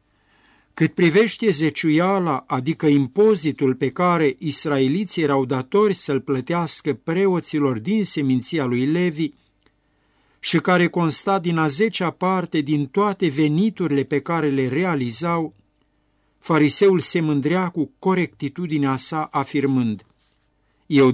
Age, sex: 50-69, male